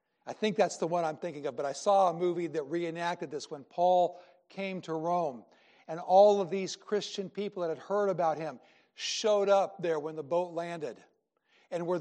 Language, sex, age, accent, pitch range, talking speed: English, male, 60-79, American, 165-200 Hz, 205 wpm